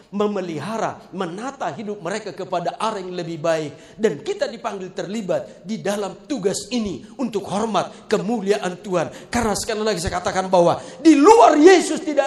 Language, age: Indonesian, 50-69